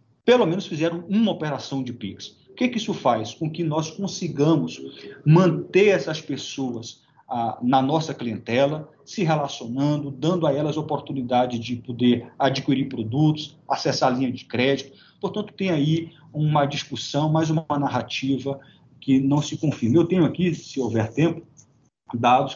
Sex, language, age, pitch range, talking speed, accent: male, Portuguese, 40-59, 120-150 Hz, 150 wpm, Brazilian